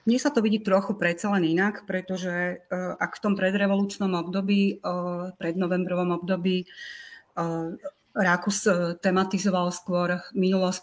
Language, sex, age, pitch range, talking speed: Slovak, female, 40-59, 180-200 Hz, 135 wpm